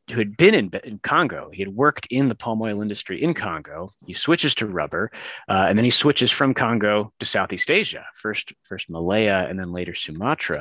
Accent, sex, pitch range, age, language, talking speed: American, male, 95-125 Hz, 30-49, English, 210 wpm